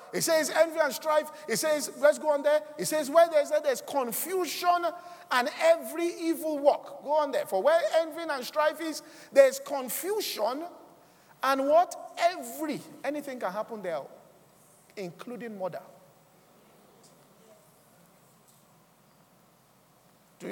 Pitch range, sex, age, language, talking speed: 220-305 Hz, male, 50-69, English, 125 wpm